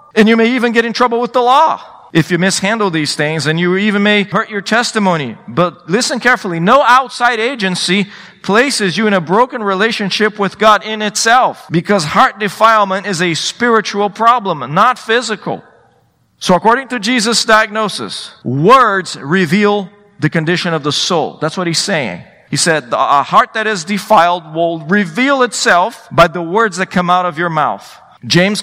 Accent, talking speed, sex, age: American, 175 wpm, male, 40-59